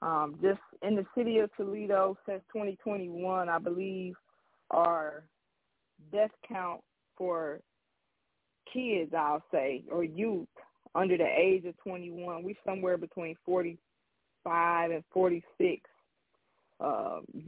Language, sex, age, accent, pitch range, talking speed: English, female, 20-39, American, 160-185 Hz, 110 wpm